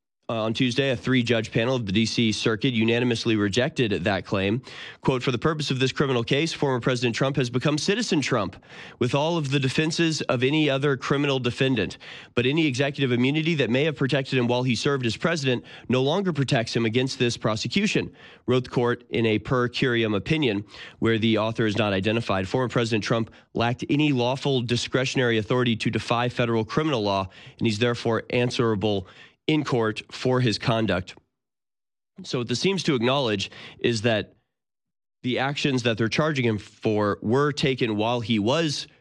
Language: English